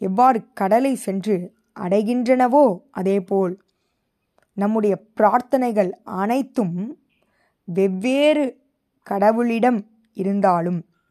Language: Tamil